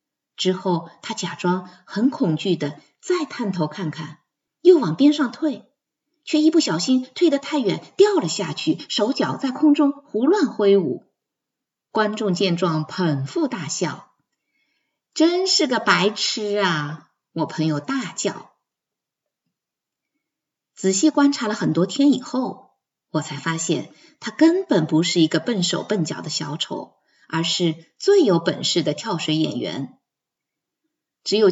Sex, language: female, Chinese